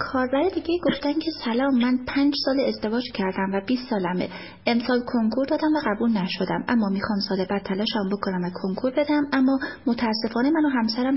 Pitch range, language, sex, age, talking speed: 210-275 Hz, Persian, female, 30-49, 185 wpm